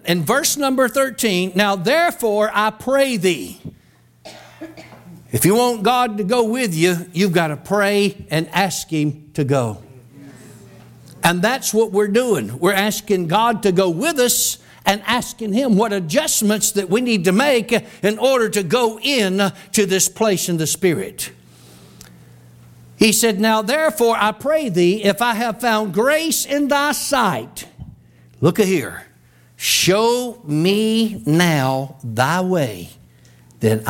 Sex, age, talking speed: male, 60-79, 145 wpm